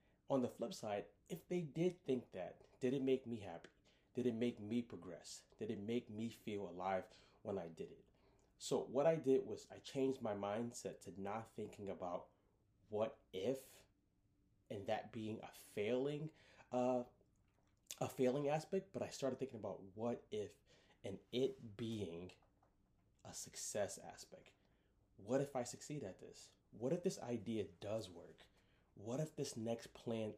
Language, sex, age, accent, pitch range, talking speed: English, male, 30-49, American, 100-130 Hz, 165 wpm